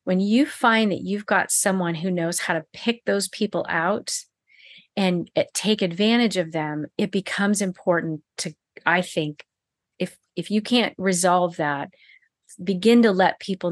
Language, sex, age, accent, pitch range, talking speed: English, female, 40-59, American, 160-195 Hz, 155 wpm